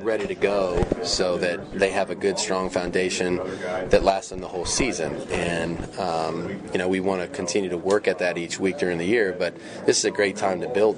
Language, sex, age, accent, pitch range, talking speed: English, male, 30-49, American, 90-95 Hz, 230 wpm